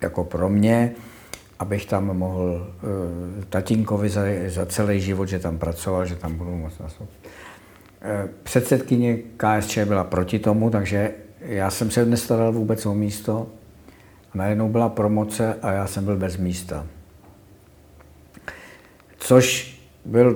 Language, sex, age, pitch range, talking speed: Czech, male, 60-79, 95-110 Hz, 125 wpm